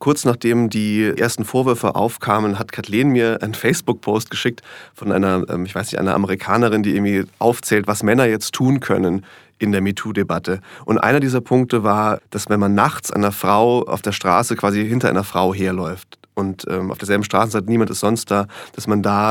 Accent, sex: German, male